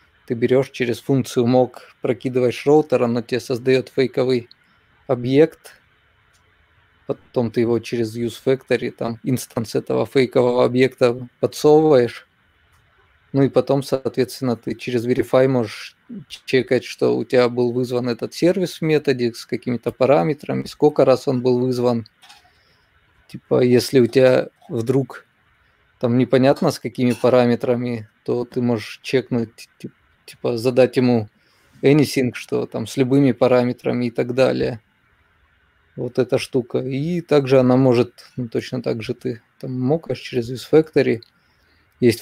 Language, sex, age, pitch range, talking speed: Russian, male, 20-39, 120-130 Hz, 130 wpm